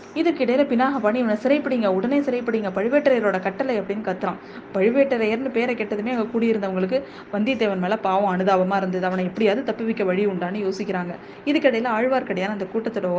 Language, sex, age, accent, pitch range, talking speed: Tamil, female, 20-39, native, 190-255 Hz, 145 wpm